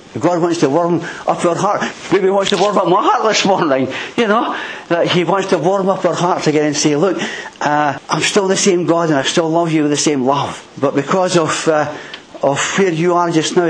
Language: English